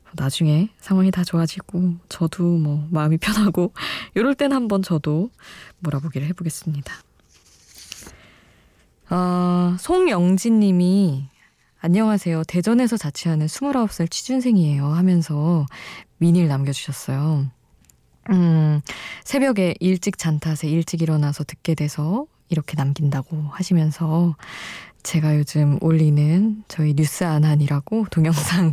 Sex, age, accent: female, 20-39, native